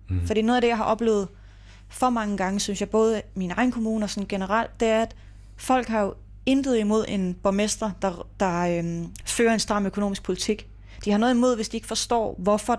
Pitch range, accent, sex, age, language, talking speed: 185-225 Hz, native, female, 30-49, Danish, 215 wpm